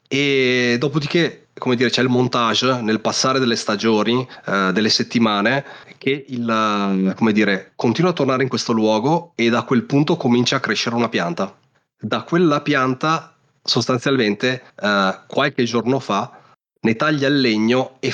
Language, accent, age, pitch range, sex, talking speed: Italian, native, 30-49, 110-135 Hz, male, 150 wpm